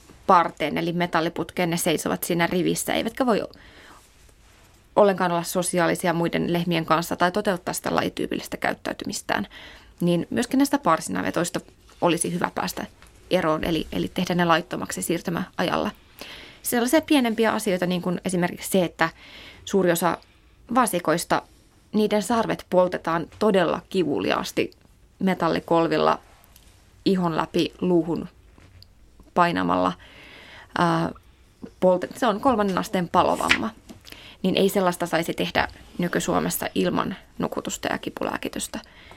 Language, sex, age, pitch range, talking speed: Finnish, female, 20-39, 165-205 Hz, 105 wpm